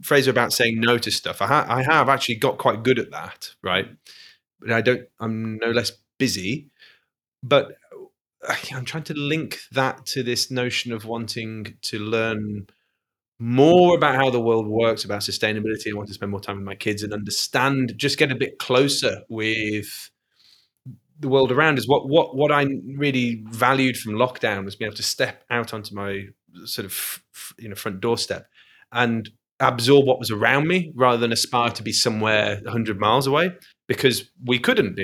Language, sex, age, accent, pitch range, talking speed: English, male, 20-39, British, 105-130 Hz, 190 wpm